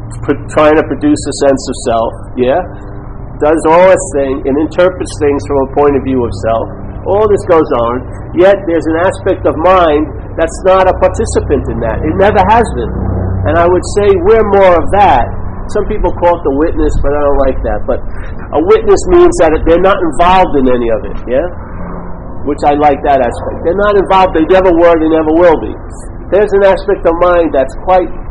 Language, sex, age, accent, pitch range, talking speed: English, male, 50-69, American, 130-200 Hz, 205 wpm